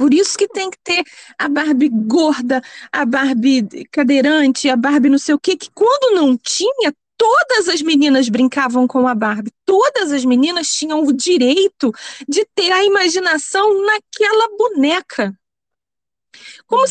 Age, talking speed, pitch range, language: 20-39, 150 wpm, 290-400 Hz, Portuguese